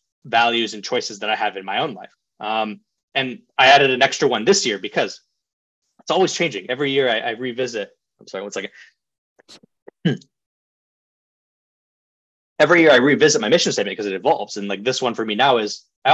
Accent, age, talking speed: American, 20-39, 190 wpm